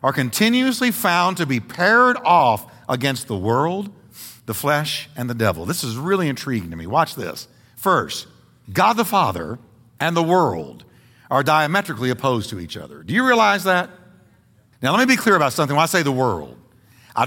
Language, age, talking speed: English, 60-79, 185 wpm